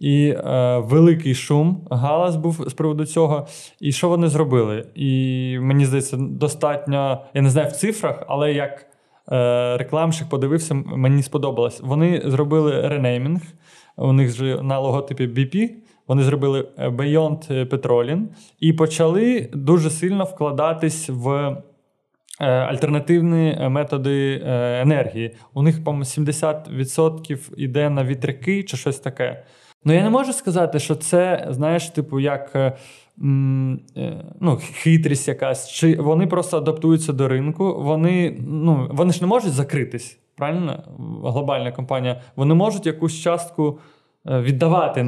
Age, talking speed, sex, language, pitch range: 20-39, 125 wpm, male, Ukrainian, 135-165 Hz